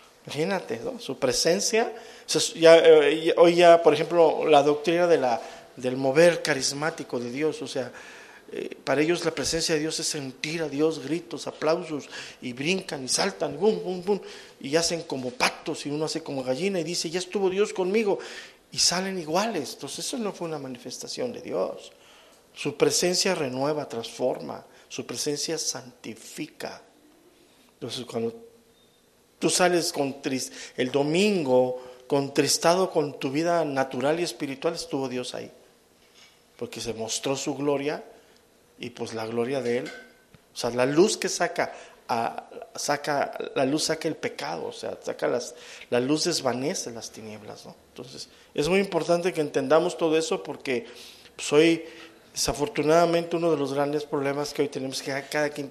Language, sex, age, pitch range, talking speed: English, male, 50-69, 135-170 Hz, 165 wpm